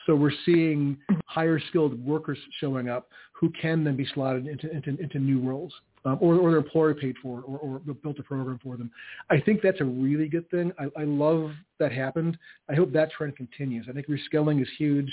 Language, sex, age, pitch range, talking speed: English, male, 40-59, 135-155 Hz, 220 wpm